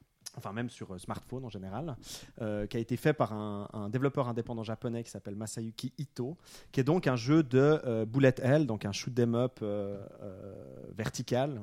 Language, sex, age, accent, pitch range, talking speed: French, male, 30-49, French, 110-130 Hz, 175 wpm